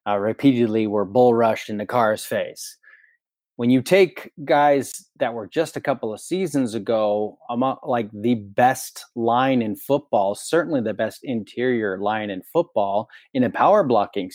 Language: English